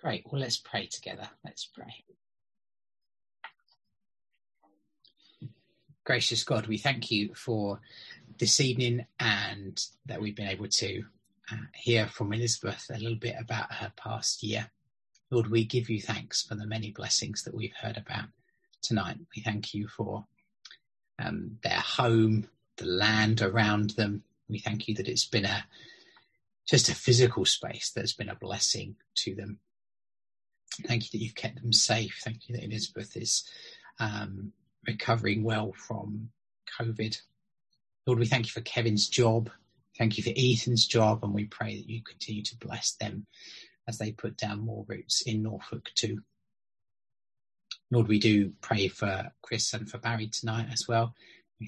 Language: English